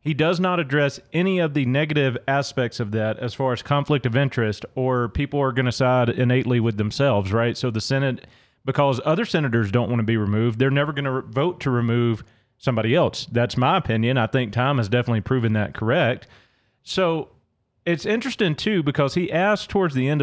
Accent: American